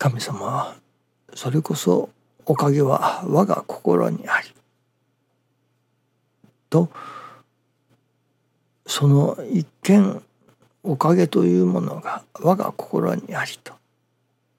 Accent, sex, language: native, male, Japanese